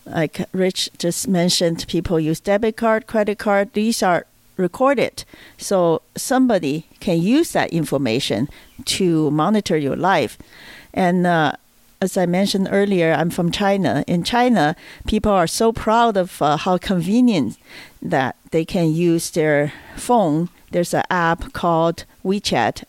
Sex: female